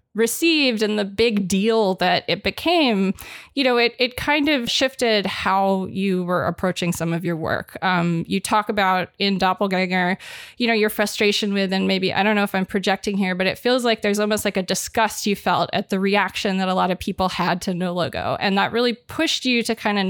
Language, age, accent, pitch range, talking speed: English, 20-39, American, 190-230 Hz, 220 wpm